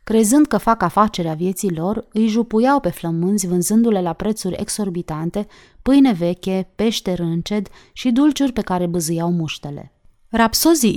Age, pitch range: 30-49, 175-225 Hz